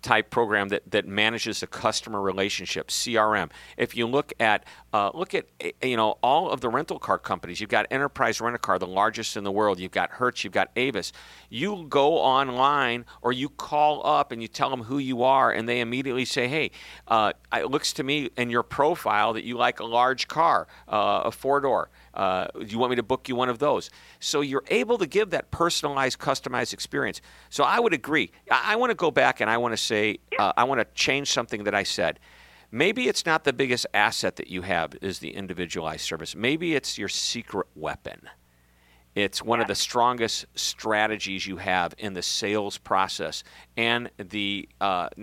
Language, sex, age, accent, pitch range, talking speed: English, male, 50-69, American, 100-130 Hz, 205 wpm